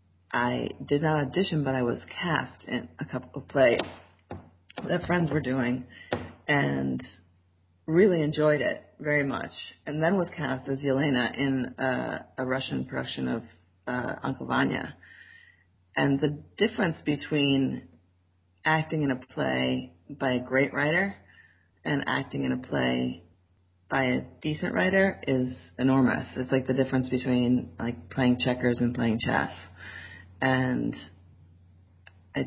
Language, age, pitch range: English, 30-49, 90-135 Hz